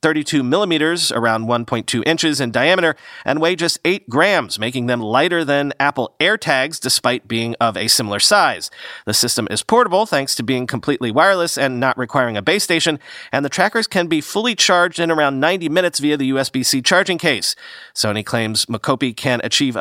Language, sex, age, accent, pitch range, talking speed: English, male, 40-59, American, 120-165 Hz, 180 wpm